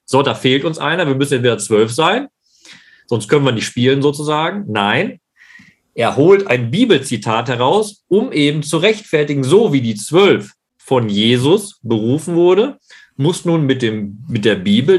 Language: German